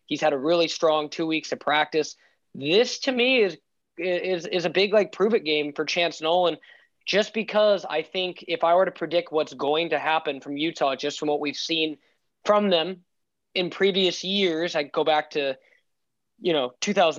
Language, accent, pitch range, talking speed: English, American, 150-180 Hz, 200 wpm